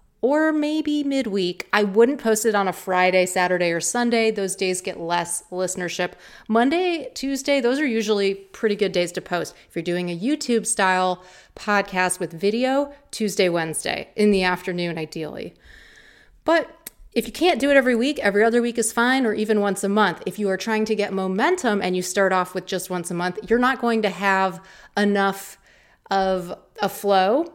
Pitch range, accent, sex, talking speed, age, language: 185-220 Hz, American, female, 185 wpm, 30-49, English